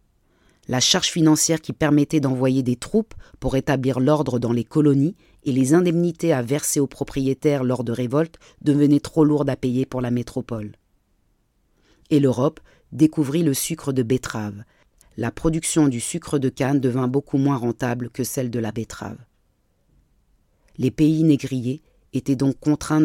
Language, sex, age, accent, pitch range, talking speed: French, female, 40-59, French, 120-145 Hz, 155 wpm